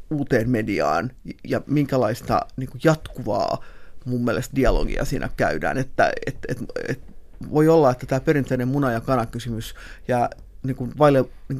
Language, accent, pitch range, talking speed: Finnish, native, 130-165 Hz, 150 wpm